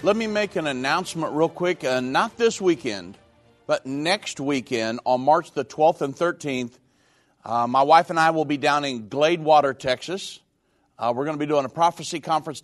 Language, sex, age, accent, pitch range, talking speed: English, male, 50-69, American, 135-170 Hz, 190 wpm